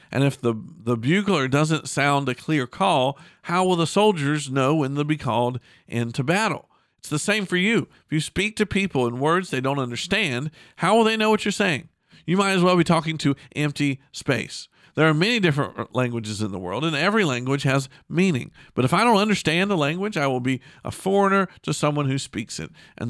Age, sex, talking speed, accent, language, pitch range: 50-69, male, 215 wpm, American, English, 130-175 Hz